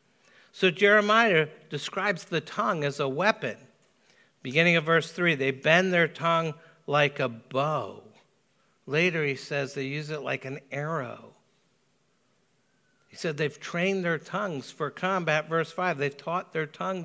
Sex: male